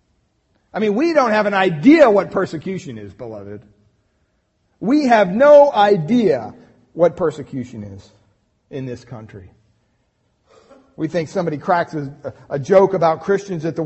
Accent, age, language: American, 40-59, English